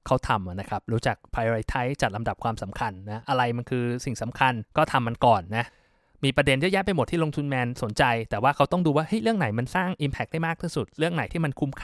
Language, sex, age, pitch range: Thai, male, 20-39, 115-150 Hz